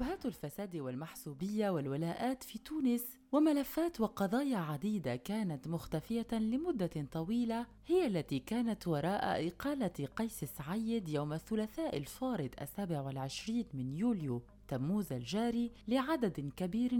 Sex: female